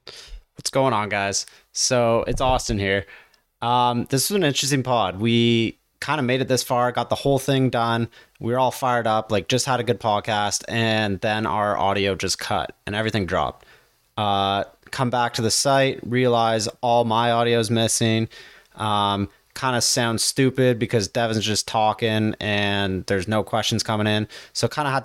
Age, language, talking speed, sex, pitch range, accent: 20-39, English, 180 wpm, male, 110-125 Hz, American